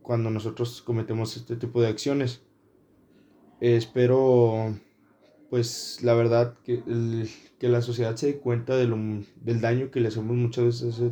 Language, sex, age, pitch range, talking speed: Spanish, male, 20-39, 115-130 Hz, 165 wpm